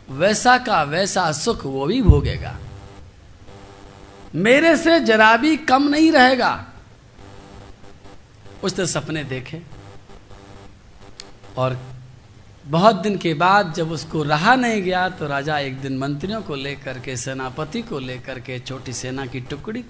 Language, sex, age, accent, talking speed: Hindi, male, 50-69, native, 130 wpm